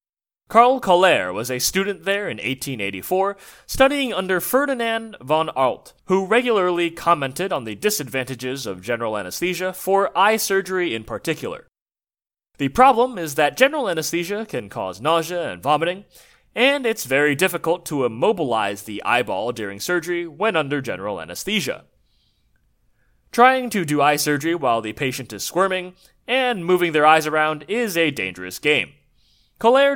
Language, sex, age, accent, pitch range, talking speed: English, male, 30-49, American, 140-210 Hz, 145 wpm